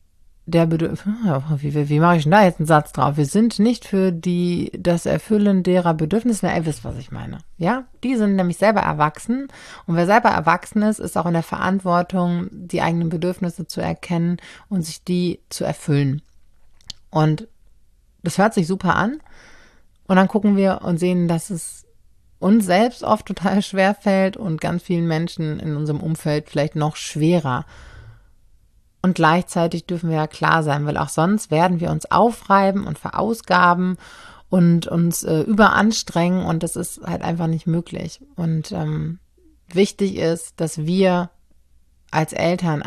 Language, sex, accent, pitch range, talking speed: German, female, German, 155-195 Hz, 165 wpm